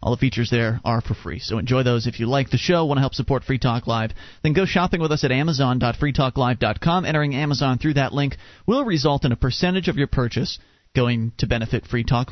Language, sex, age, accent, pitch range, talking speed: English, male, 40-59, American, 125-180 Hz, 230 wpm